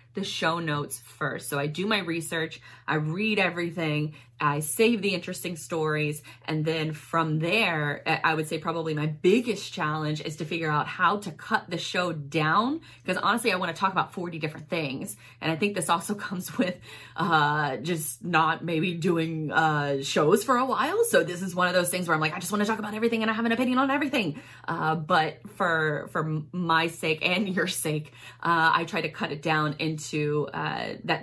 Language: English